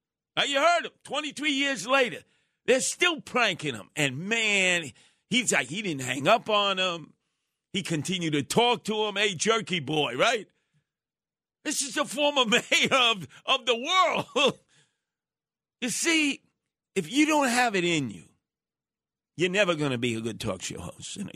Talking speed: 165 wpm